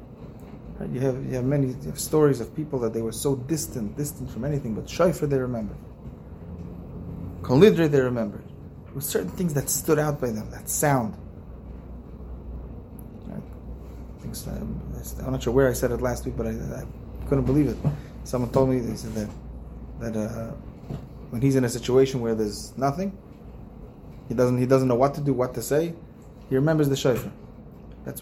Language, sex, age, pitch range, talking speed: English, male, 20-39, 110-140 Hz, 180 wpm